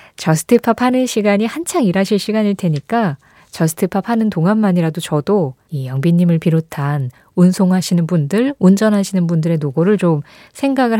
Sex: female